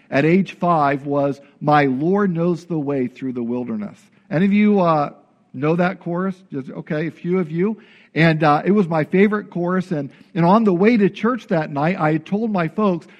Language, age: English, 50-69